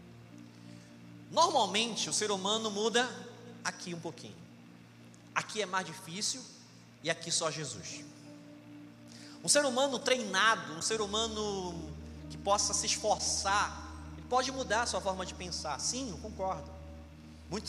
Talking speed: 130 wpm